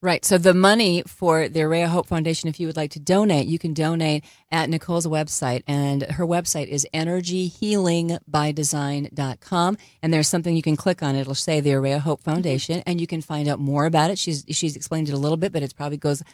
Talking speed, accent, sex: 215 wpm, American, female